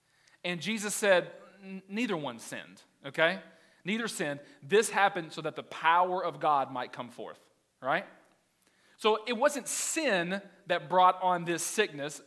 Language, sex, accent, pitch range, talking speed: English, male, American, 170-215 Hz, 145 wpm